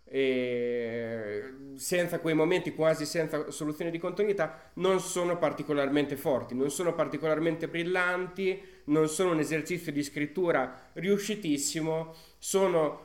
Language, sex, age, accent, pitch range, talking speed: Italian, male, 30-49, native, 140-175 Hz, 115 wpm